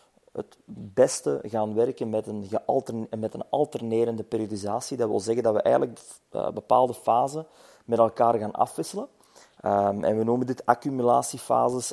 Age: 30-49